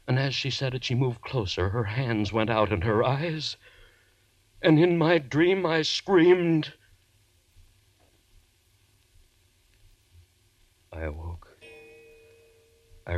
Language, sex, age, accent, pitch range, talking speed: English, male, 60-79, American, 90-120 Hz, 110 wpm